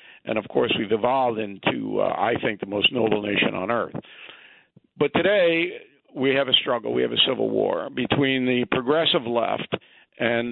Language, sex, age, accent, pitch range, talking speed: English, male, 50-69, American, 120-145 Hz, 175 wpm